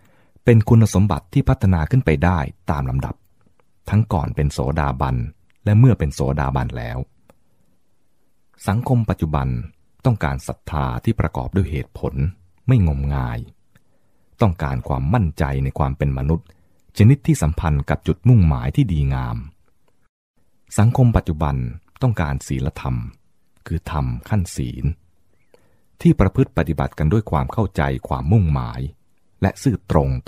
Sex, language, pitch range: male, English, 70-100 Hz